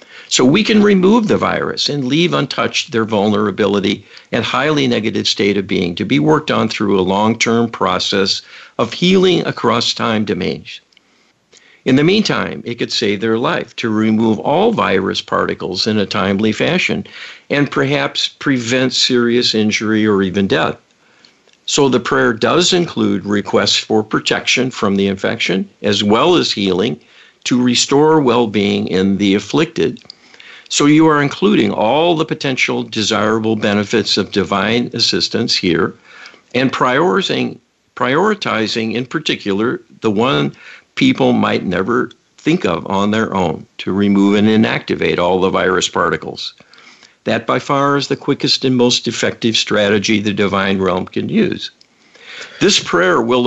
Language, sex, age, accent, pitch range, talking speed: English, male, 50-69, American, 105-140 Hz, 145 wpm